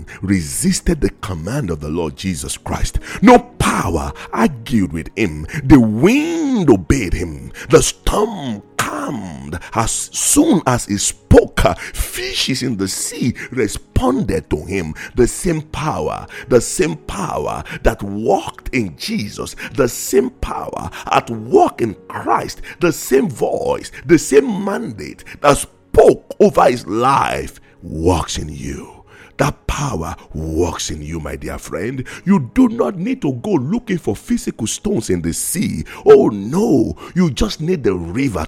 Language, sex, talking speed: English, male, 140 wpm